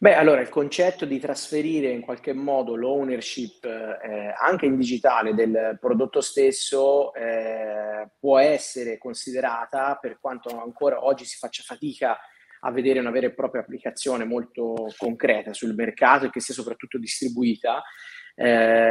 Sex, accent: male, native